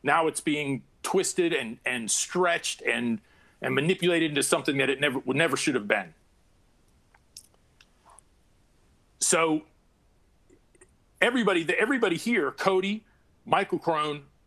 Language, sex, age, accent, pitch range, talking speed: English, male, 40-59, American, 150-215 Hz, 115 wpm